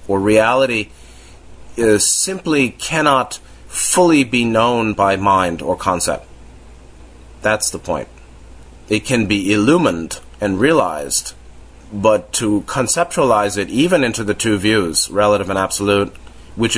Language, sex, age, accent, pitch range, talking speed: English, male, 30-49, American, 90-105 Hz, 120 wpm